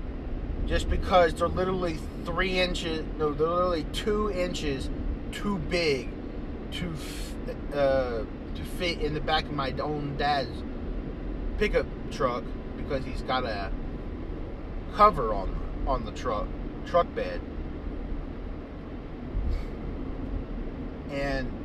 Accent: American